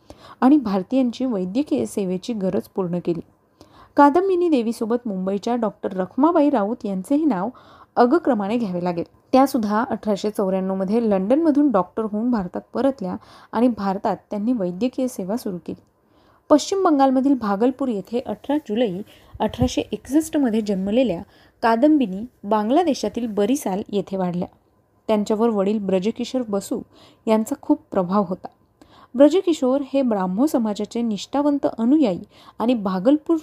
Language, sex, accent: Marathi, female, native